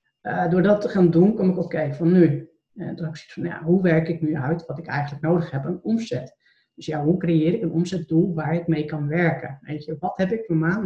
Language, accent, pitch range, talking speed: Dutch, Dutch, 150-175 Hz, 270 wpm